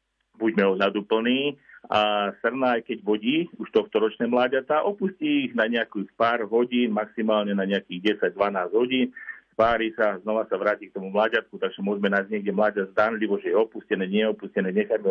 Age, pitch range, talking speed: 50-69, 100-120 Hz, 165 wpm